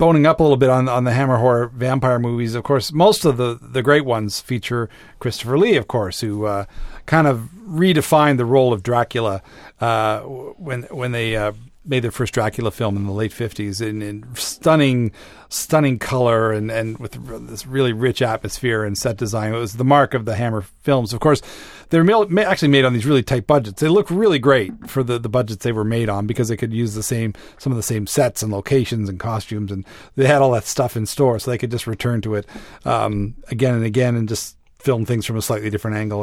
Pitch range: 110-135 Hz